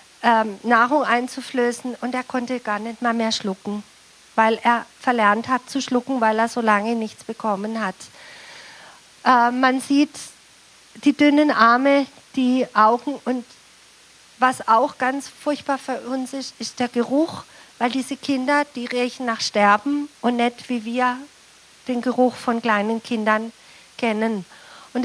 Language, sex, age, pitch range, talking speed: German, female, 50-69, 235-275 Hz, 145 wpm